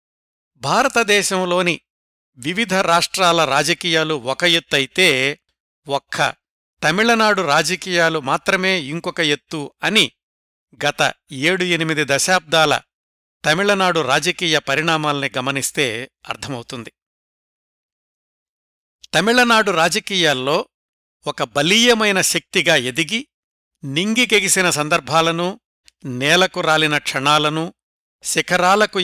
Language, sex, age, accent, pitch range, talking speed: Telugu, male, 60-79, native, 145-185 Hz, 70 wpm